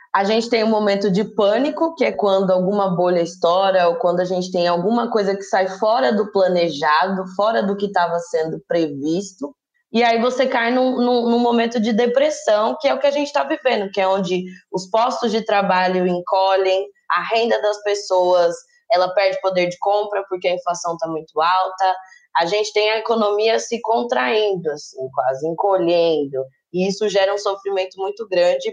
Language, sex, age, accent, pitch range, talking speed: Portuguese, female, 20-39, Brazilian, 180-235 Hz, 185 wpm